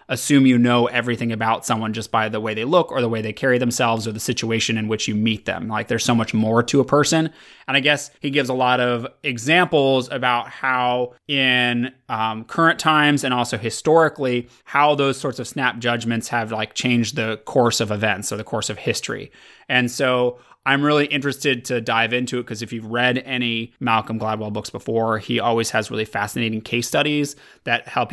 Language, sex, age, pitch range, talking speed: English, male, 20-39, 110-130 Hz, 205 wpm